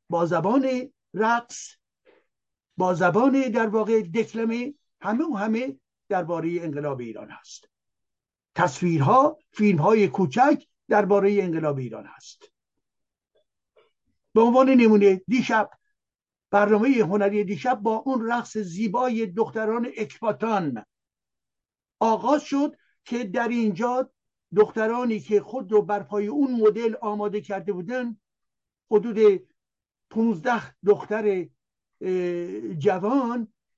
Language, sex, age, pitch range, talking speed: Persian, male, 60-79, 175-235 Hz, 100 wpm